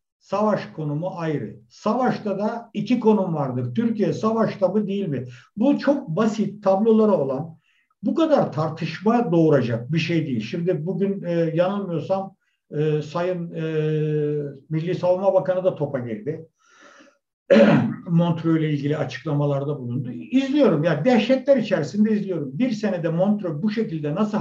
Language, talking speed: Turkish, 135 wpm